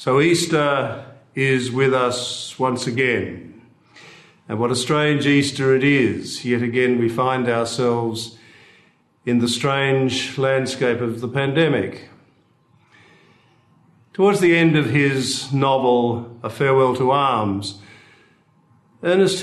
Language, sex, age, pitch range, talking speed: English, male, 50-69, 120-155 Hz, 115 wpm